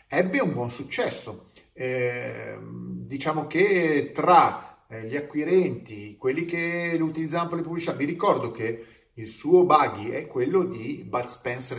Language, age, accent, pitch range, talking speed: Italian, 30-49, native, 120-170 Hz, 145 wpm